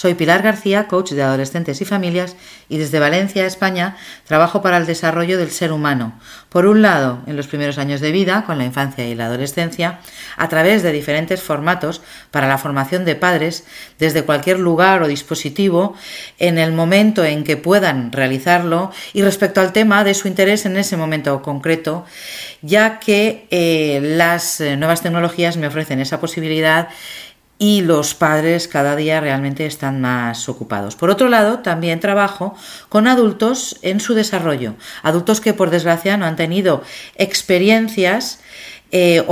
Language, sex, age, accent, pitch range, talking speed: Spanish, female, 40-59, Spanish, 150-190 Hz, 160 wpm